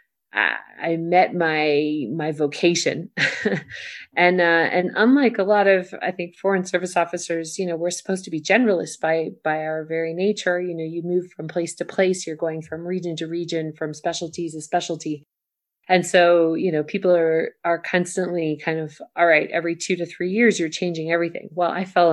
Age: 30-49